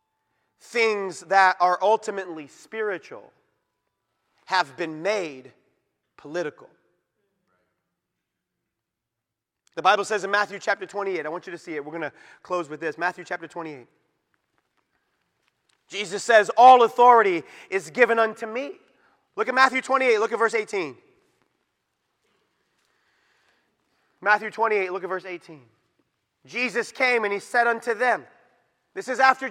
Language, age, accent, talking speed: English, 30-49, American, 130 wpm